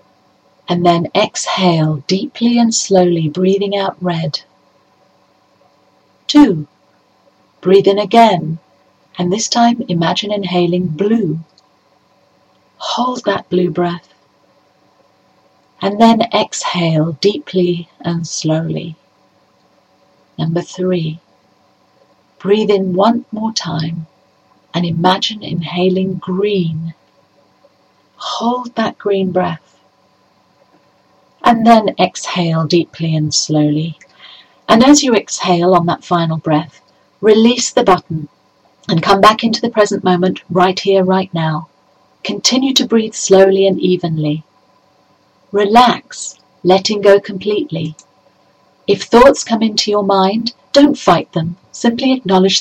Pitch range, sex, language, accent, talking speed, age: 170-210 Hz, female, English, British, 105 wpm, 40-59